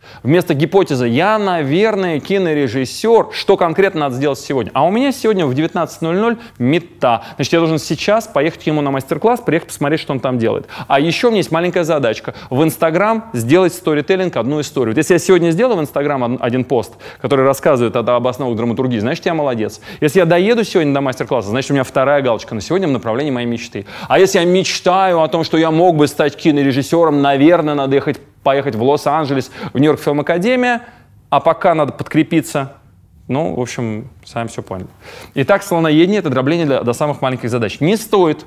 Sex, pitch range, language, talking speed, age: male, 125-175 Hz, Russian, 190 wpm, 20-39